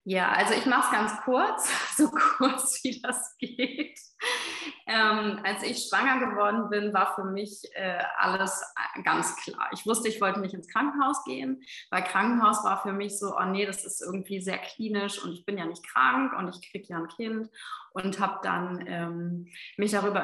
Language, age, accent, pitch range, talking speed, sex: German, 20-39, German, 180-220 Hz, 190 wpm, female